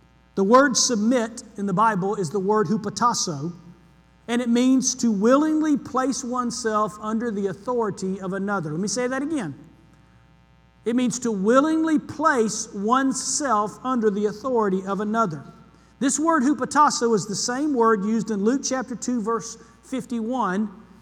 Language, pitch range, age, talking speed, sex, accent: English, 205-260 Hz, 50-69, 150 wpm, male, American